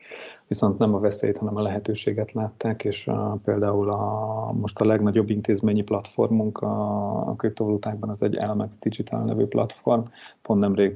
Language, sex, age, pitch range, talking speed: Hungarian, male, 30-49, 100-110 Hz, 150 wpm